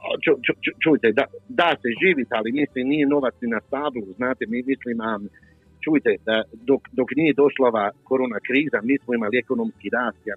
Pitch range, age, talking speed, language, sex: 110-140 Hz, 50-69, 180 wpm, Croatian, male